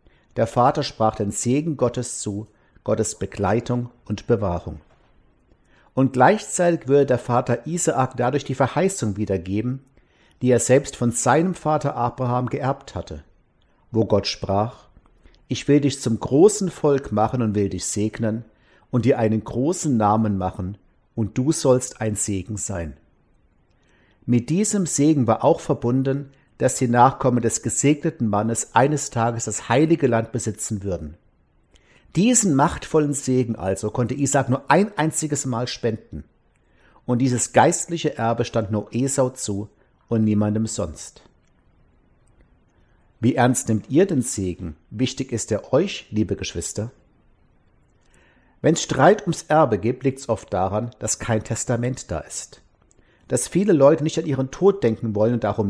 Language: German